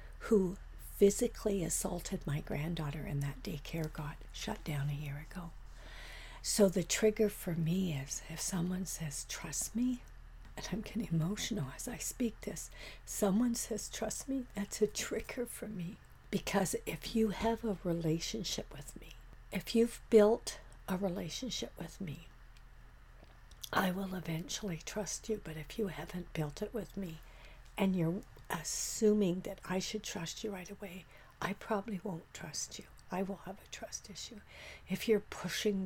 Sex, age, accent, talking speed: female, 60-79, American, 155 wpm